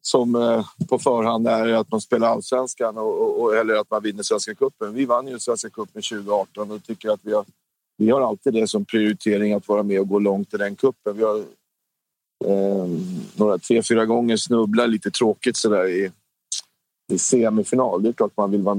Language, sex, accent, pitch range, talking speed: Swedish, male, native, 105-120 Hz, 200 wpm